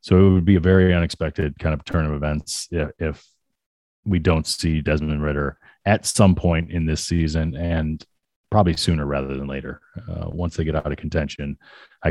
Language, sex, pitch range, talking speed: English, male, 80-100 Hz, 190 wpm